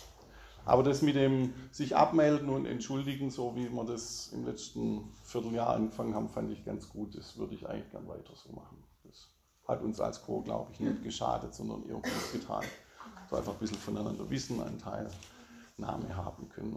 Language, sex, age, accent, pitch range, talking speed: German, male, 40-59, German, 110-155 Hz, 185 wpm